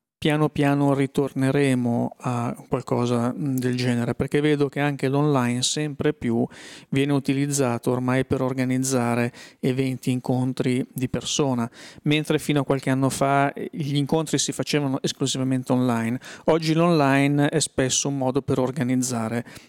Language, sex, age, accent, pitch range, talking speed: Italian, male, 40-59, native, 120-145 Hz, 130 wpm